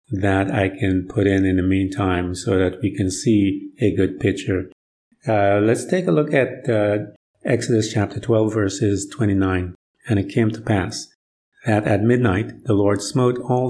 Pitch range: 100-125 Hz